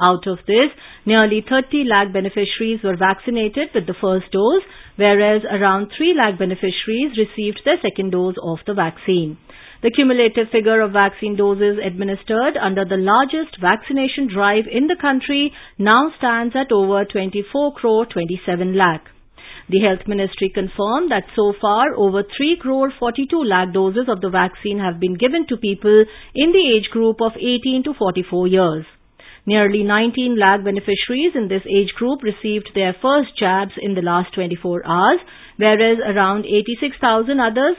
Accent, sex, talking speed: Indian, female, 155 wpm